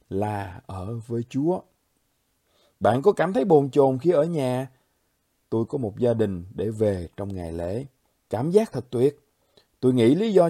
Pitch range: 110-155 Hz